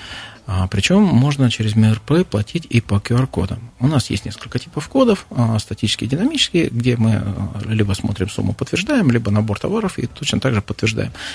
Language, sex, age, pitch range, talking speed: Russian, male, 40-59, 100-125 Hz, 165 wpm